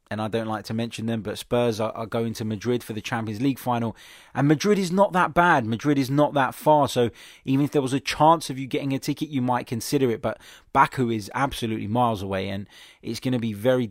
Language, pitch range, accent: English, 110-130 Hz, British